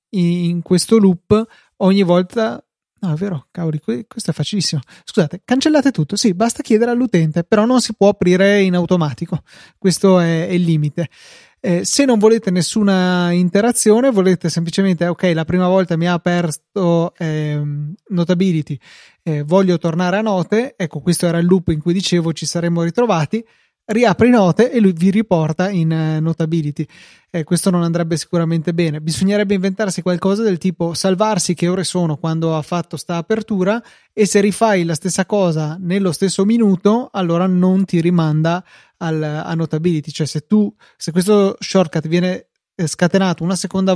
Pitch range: 165-195 Hz